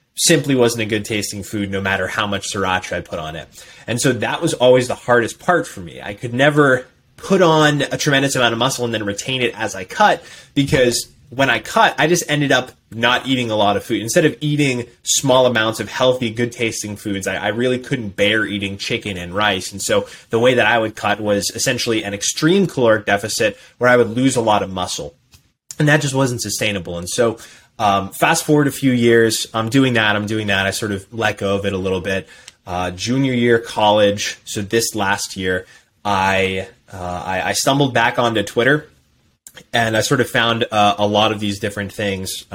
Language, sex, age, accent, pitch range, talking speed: English, male, 20-39, American, 100-125 Hz, 215 wpm